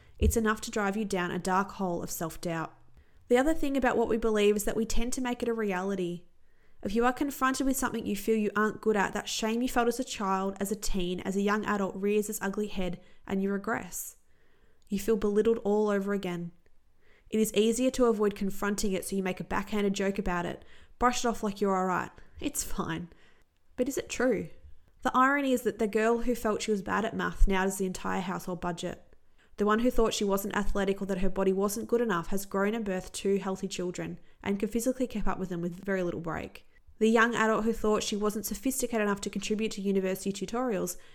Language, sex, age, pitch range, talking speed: English, female, 20-39, 195-225 Hz, 230 wpm